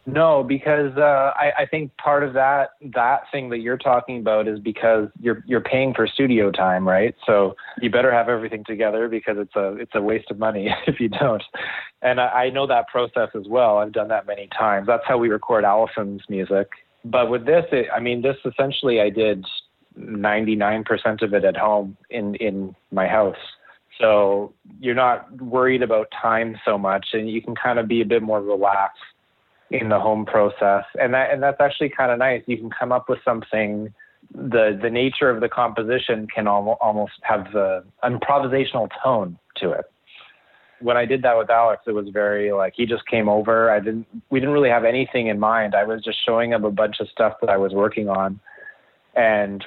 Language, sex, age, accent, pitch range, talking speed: English, male, 30-49, American, 105-125 Hz, 205 wpm